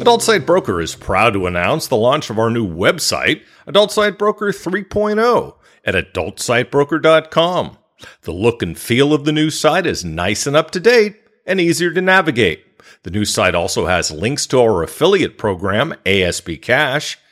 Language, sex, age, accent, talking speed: English, male, 50-69, American, 165 wpm